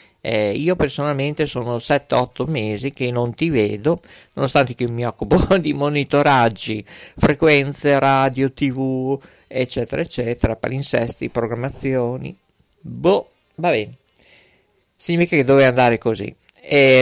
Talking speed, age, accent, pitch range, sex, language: 115 wpm, 50-69, native, 115-145 Hz, male, Italian